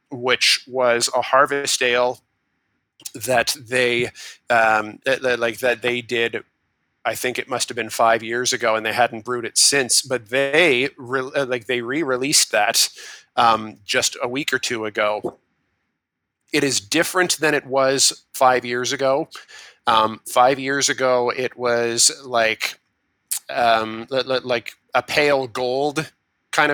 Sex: male